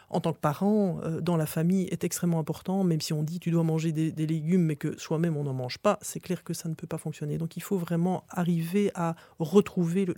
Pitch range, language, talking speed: 160-190 Hz, French, 260 wpm